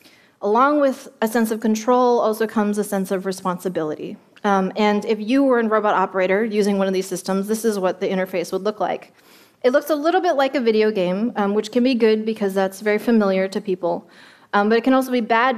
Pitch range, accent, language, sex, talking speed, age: 205-270 Hz, American, Russian, female, 230 wpm, 20-39